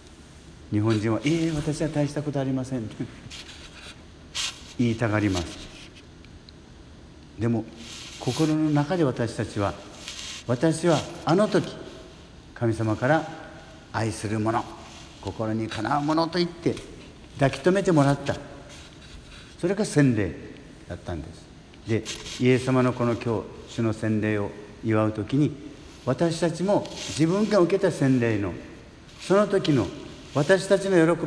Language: Japanese